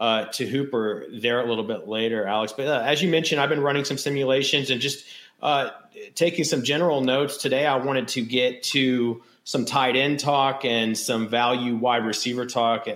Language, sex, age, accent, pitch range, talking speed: English, male, 30-49, American, 115-145 Hz, 195 wpm